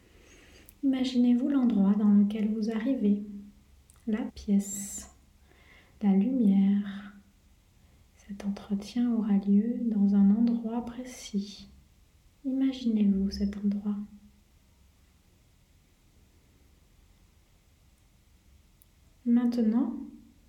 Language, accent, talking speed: French, French, 65 wpm